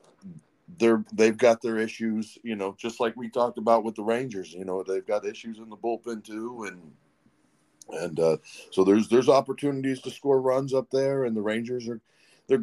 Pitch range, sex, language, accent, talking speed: 115-135 Hz, male, English, American, 195 wpm